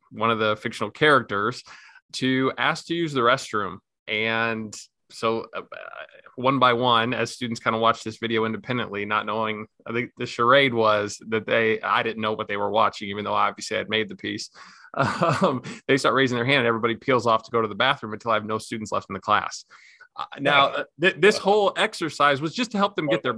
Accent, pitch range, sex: American, 115-140 Hz, male